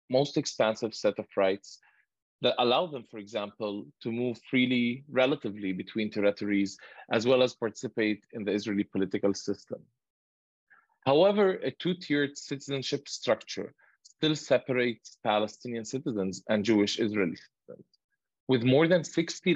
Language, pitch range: English, 105-140 Hz